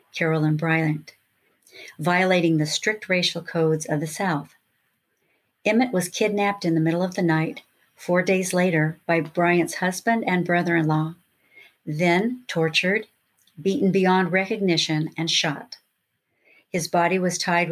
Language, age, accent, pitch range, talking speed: English, 60-79, American, 160-185 Hz, 130 wpm